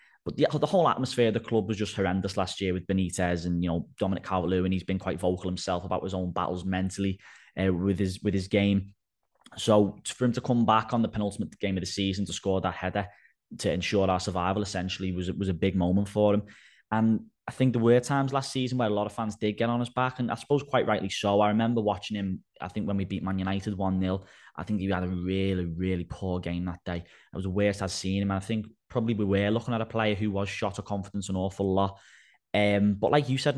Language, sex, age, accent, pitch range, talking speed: English, male, 10-29, British, 95-115 Hz, 255 wpm